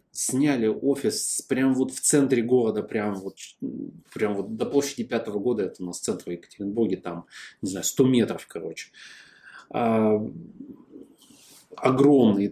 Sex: male